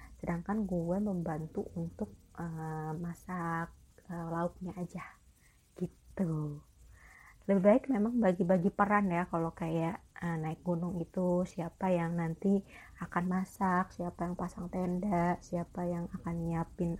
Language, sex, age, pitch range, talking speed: Indonesian, female, 20-39, 170-195 Hz, 125 wpm